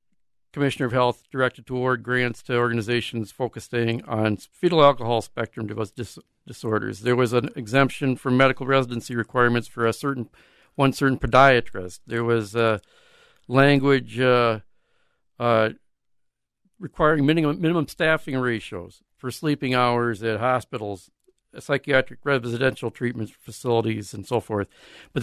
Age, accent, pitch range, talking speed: 50-69, American, 120-145 Hz, 125 wpm